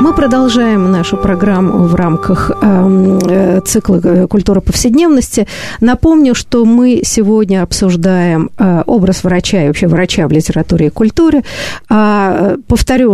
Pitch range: 175-220 Hz